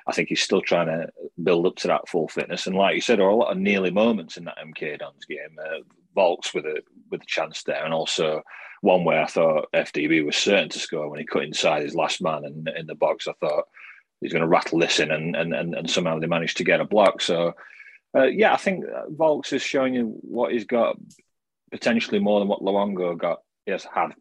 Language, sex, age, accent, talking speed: English, male, 30-49, British, 240 wpm